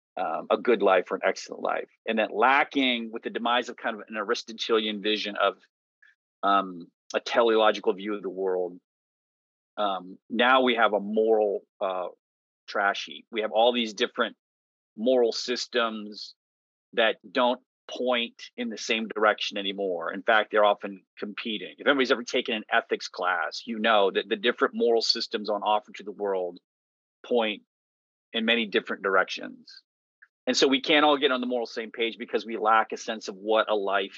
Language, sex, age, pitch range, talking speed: English, male, 30-49, 105-130 Hz, 175 wpm